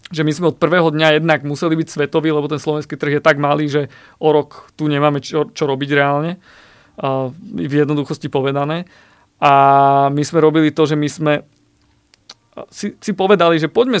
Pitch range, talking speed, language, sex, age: 140-160 Hz, 185 wpm, Slovak, male, 30-49